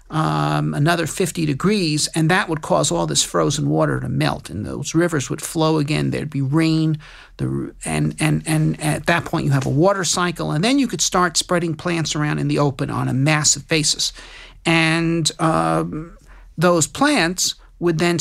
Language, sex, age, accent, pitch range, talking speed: English, male, 50-69, American, 145-175 Hz, 185 wpm